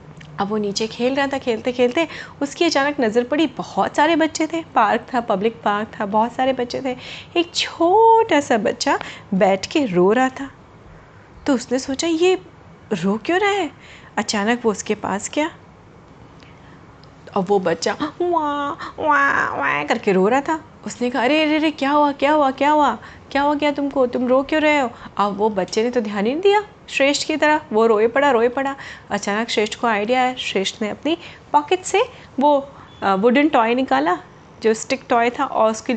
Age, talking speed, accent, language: 30-49, 190 wpm, native, Hindi